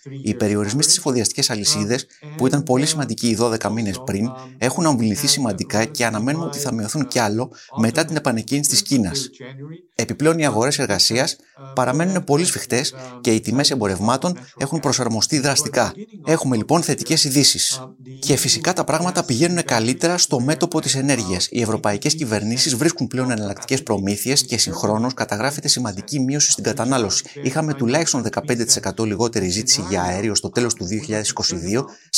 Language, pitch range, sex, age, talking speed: Greek, 110-145 Hz, male, 30-49, 150 wpm